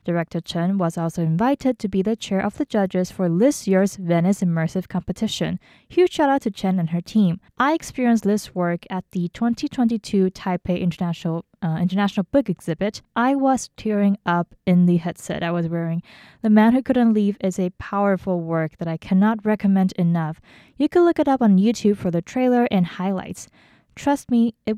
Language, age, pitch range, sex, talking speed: English, 20-39, 175-220 Hz, female, 190 wpm